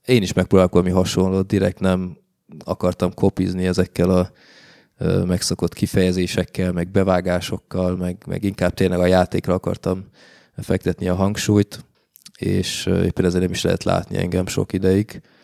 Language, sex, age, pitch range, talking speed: Hungarian, male, 20-39, 90-95 Hz, 130 wpm